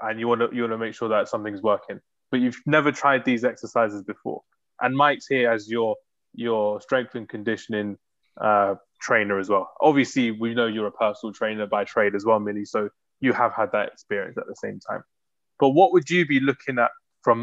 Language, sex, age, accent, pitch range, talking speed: English, male, 20-39, British, 105-125 Hz, 215 wpm